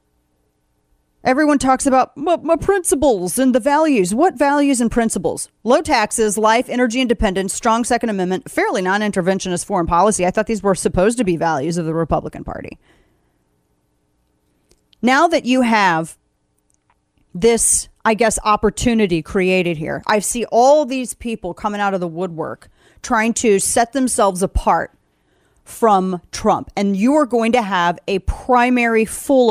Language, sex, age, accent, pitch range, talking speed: English, female, 30-49, American, 165-235 Hz, 145 wpm